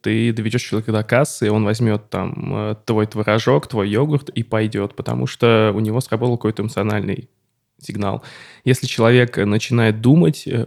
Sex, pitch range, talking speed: male, 110-130 Hz, 145 wpm